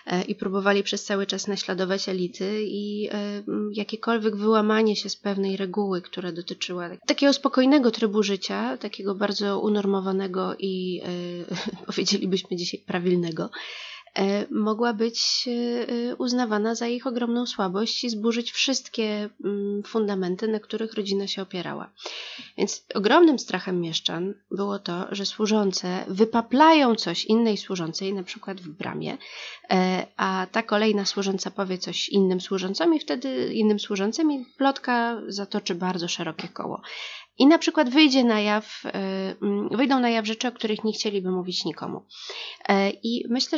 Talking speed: 135 wpm